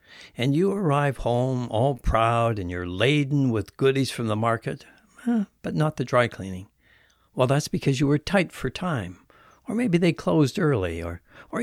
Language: English